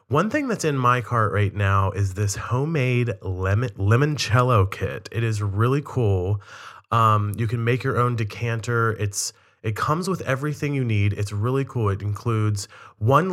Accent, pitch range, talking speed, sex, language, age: American, 105-130 Hz, 170 wpm, male, English, 30-49